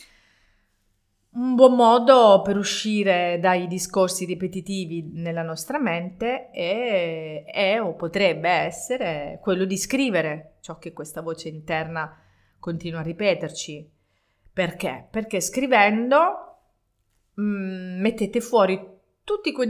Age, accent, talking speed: 30-49, native, 105 wpm